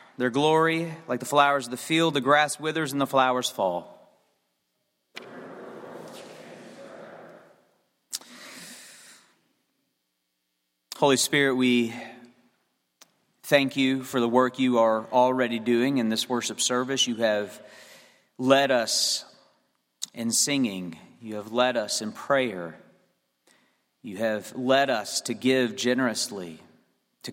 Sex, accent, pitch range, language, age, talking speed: male, American, 115-135 Hz, English, 30-49, 110 wpm